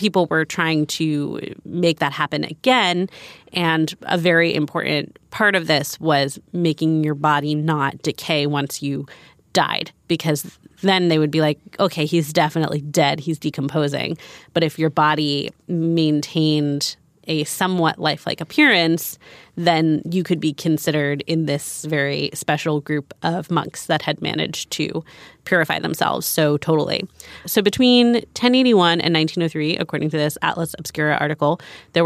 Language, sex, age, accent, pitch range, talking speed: English, female, 20-39, American, 150-175 Hz, 145 wpm